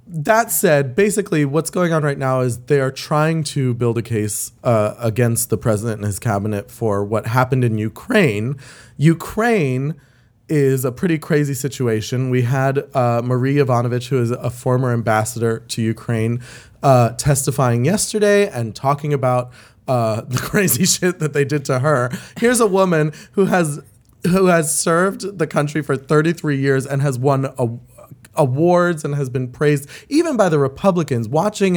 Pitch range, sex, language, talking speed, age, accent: 125-170 Hz, male, English, 165 wpm, 20-39, American